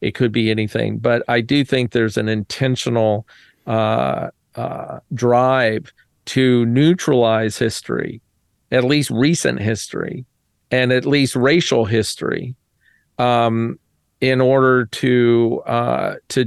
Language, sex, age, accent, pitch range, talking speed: English, male, 40-59, American, 115-130 Hz, 115 wpm